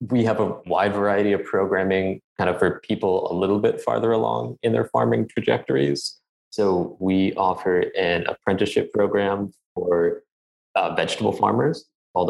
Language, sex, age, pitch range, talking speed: English, male, 20-39, 85-105 Hz, 150 wpm